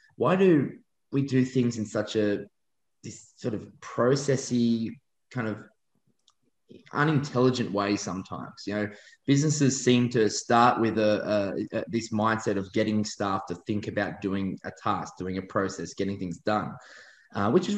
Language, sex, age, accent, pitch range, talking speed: English, male, 20-39, Australian, 95-120 Hz, 160 wpm